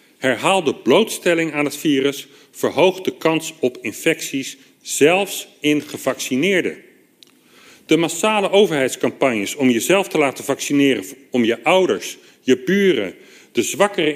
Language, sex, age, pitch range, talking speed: Dutch, male, 40-59, 140-180 Hz, 120 wpm